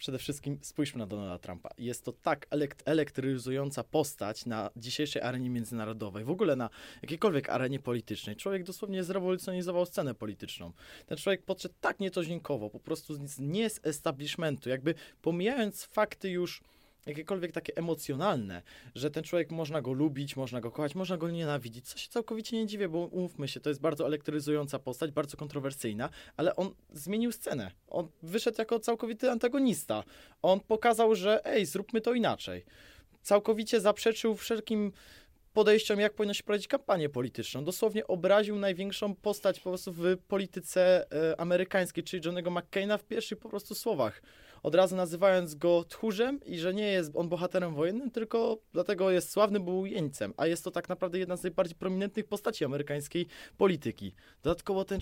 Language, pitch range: Polish, 145-200 Hz